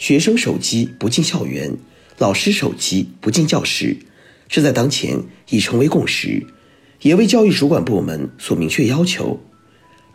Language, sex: Chinese, male